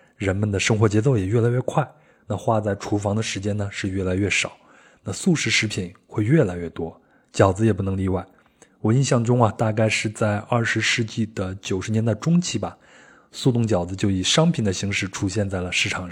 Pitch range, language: 95-115 Hz, Chinese